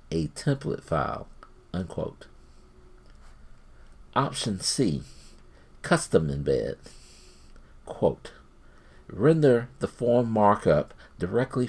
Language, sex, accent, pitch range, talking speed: English, male, American, 75-115 Hz, 70 wpm